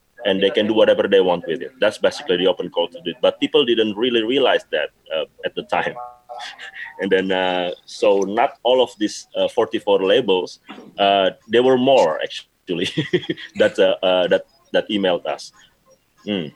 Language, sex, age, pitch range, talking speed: English, male, 30-49, 95-145 Hz, 180 wpm